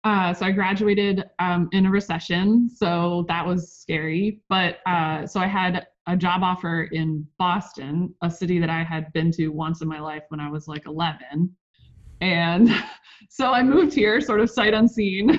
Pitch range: 160-195 Hz